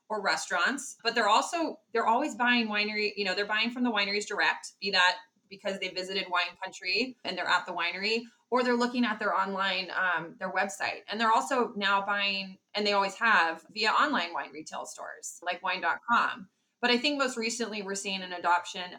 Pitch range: 180-230 Hz